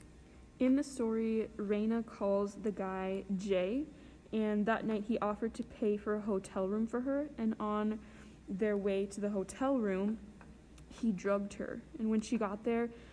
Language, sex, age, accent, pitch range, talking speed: English, female, 20-39, American, 195-220 Hz, 170 wpm